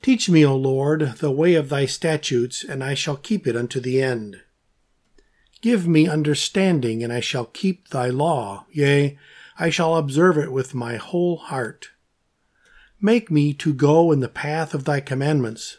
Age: 50-69